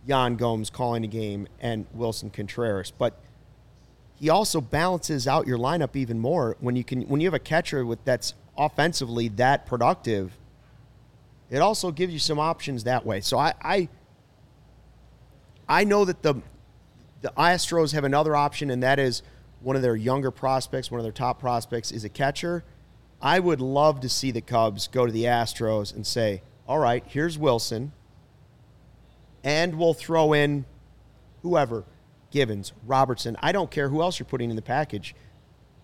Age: 30-49